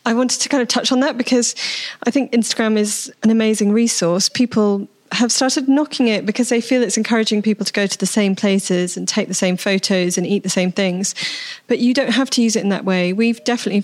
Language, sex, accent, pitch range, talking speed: English, female, British, 185-220 Hz, 240 wpm